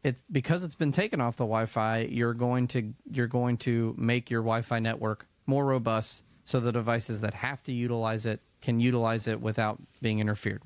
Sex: male